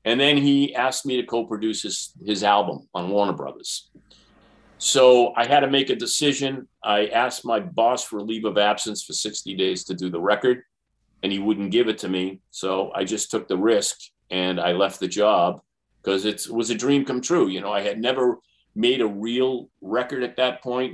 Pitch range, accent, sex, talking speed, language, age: 105-130 Hz, American, male, 205 wpm, English, 40-59